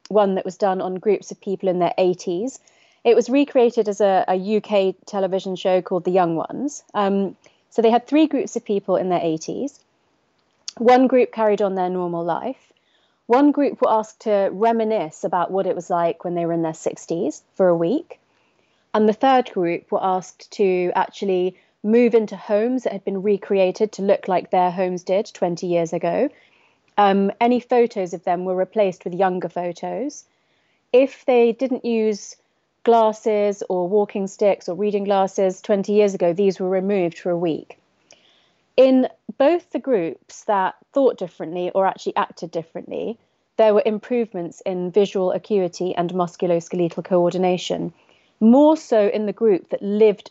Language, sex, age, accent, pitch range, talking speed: English, female, 30-49, British, 180-225 Hz, 170 wpm